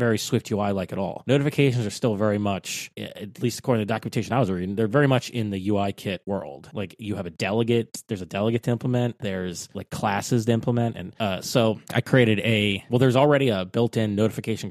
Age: 20-39